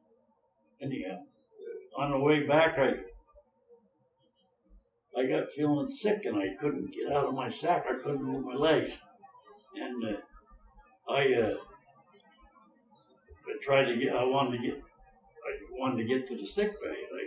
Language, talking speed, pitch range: English, 155 wpm, 140-220 Hz